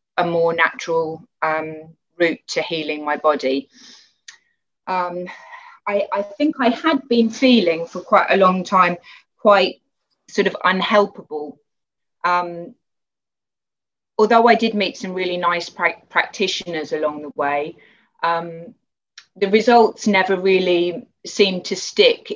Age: 30-49